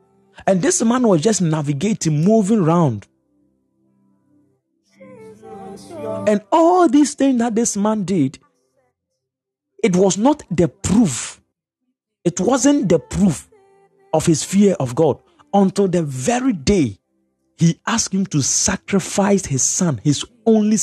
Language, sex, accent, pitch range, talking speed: English, male, Nigerian, 150-215 Hz, 125 wpm